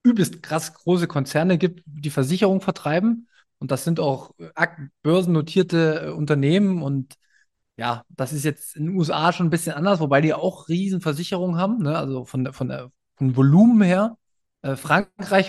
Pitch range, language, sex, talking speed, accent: 135-175 Hz, German, male, 160 wpm, German